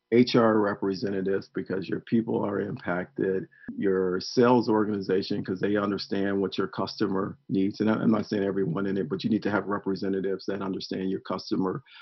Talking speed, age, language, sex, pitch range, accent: 170 wpm, 50-69, English, male, 95-115 Hz, American